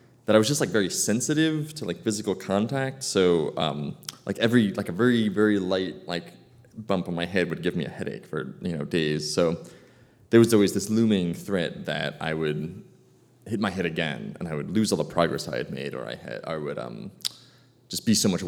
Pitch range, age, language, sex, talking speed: 85-125 Hz, 20-39, English, male, 220 wpm